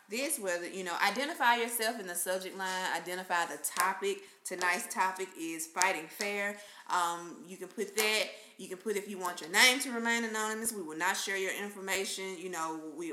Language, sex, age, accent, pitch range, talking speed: English, female, 20-39, American, 170-200 Hz, 195 wpm